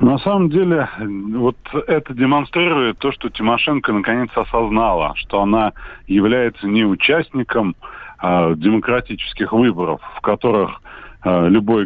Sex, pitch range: male, 100-140 Hz